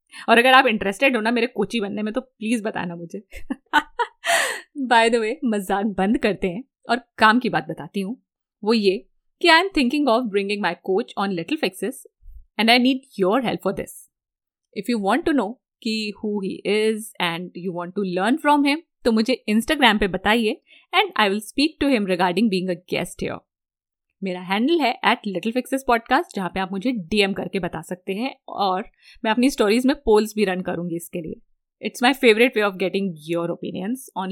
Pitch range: 190-255 Hz